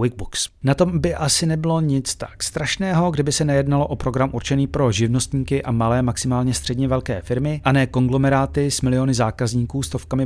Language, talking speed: Czech, 175 wpm